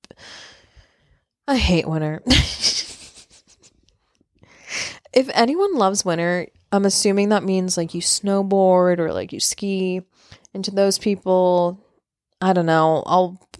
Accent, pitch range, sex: American, 175-210 Hz, female